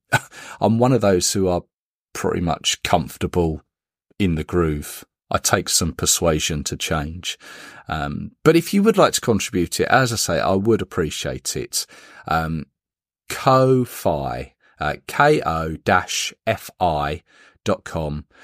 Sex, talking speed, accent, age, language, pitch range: male, 130 wpm, British, 40-59, English, 85-135 Hz